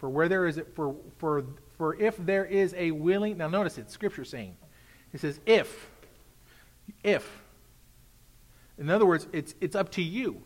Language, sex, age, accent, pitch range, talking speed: English, male, 40-59, American, 120-185 Hz, 170 wpm